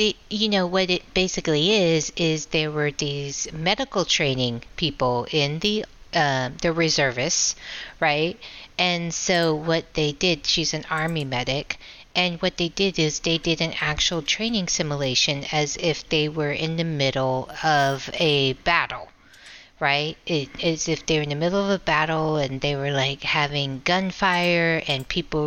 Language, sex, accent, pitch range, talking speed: English, female, American, 145-175 Hz, 165 wpm